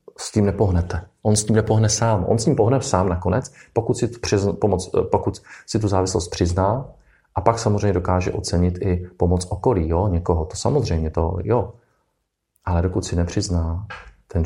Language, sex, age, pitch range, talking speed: Czech, male, 40-59, 85-95 Hz, 160 wpm